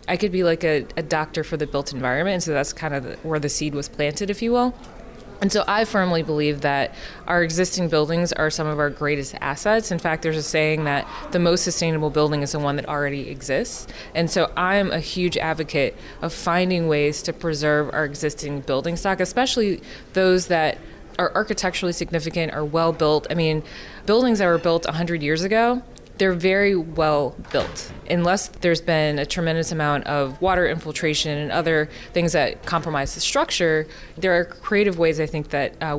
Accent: American